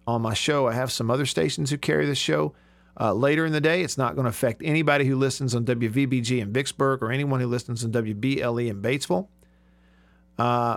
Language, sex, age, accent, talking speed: English, male, 50-69, American, 210 wpm